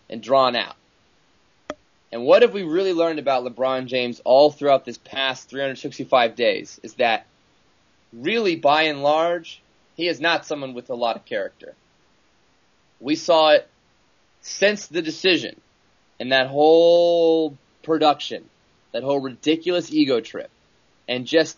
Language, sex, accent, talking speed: English, male, American, 140 wpm